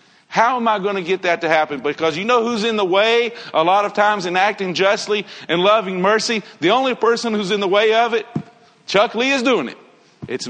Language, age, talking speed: English, 50-69, 235 wpm